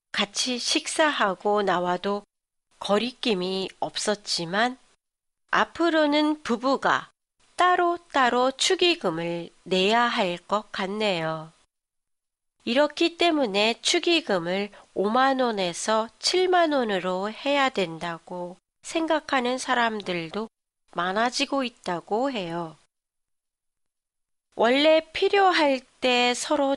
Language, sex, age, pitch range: Japanese, female, 40-59, 190-275 Hz